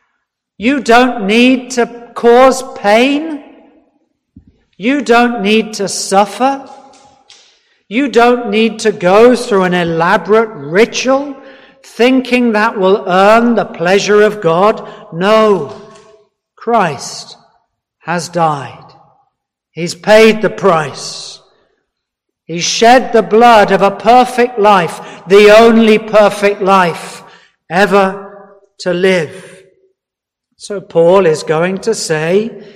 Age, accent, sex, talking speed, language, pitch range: 50-69, British, male, 105 wpm, English, 190-240 Hz